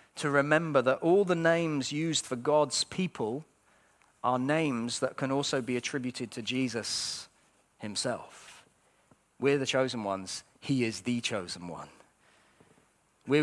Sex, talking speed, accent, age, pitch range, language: male, 135 wpm, British, 40-59, 125-165 Hz, English